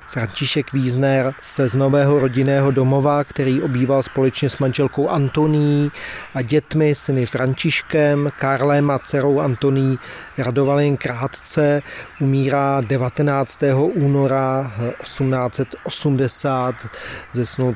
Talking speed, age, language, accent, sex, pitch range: 95 wpm, 40-59, Czech, native, male, 130-145 Hz